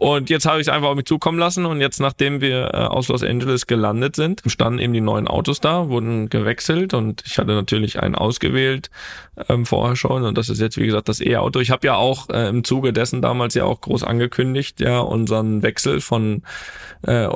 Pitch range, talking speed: 110-135 Hz, 215 wpm